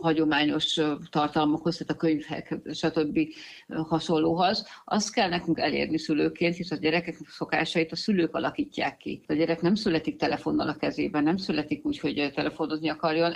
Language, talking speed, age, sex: Hungarian, 150 wpm, 50-69, female